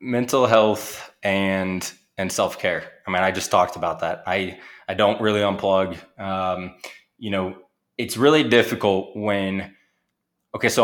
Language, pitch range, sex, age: English, 95-110 Hz, male, 20-39